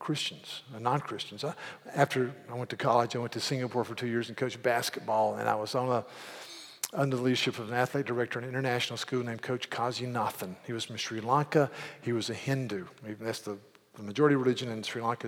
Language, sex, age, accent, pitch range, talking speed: English, male, 50-69, American, 120-145 Hz, 210 wpm